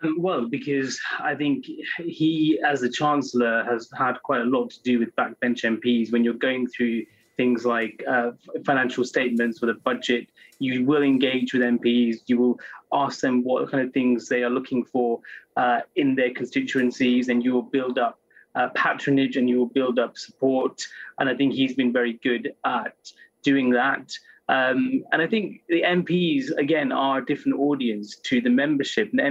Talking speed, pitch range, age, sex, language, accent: 185 wpm, 120-140 Hz, 20-39, male, English, British